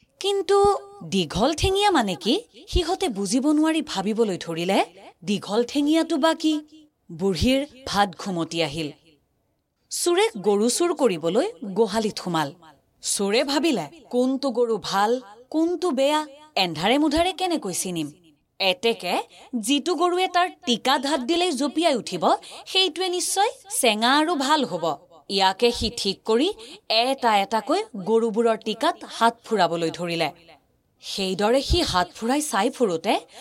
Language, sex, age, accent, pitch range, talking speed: English, female, 30-49, Indian, 195-320 Hz, 110 wpm